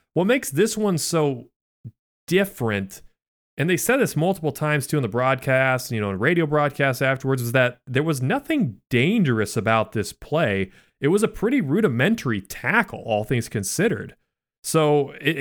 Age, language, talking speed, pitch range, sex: 30-49, English, 165 wpm, 110-150 Hz, male